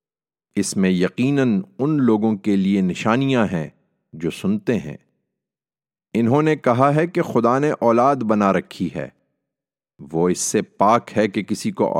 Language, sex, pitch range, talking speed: English, male, 95-130 Hz, 155 wpm